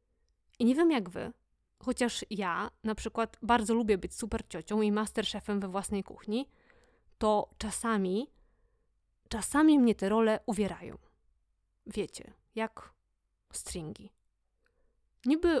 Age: 20-39